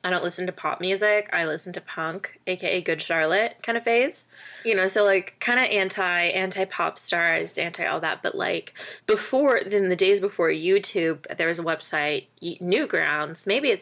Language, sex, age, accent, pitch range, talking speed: English, female, 20-39, American, 170-200 Hz, 190 wpm